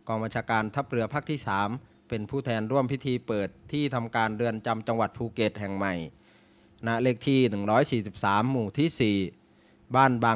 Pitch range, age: 110-125 Hz, 20-39